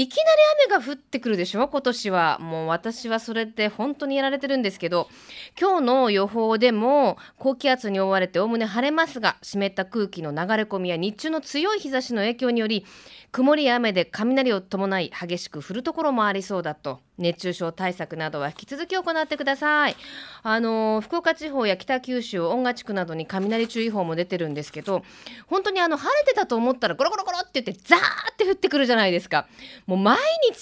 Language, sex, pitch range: Japanese, female, 185-280 Hz